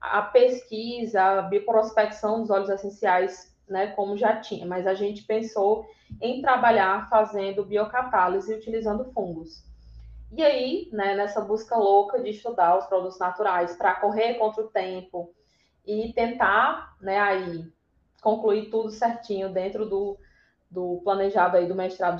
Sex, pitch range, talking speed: female, 190-225 Hz, 140 wpm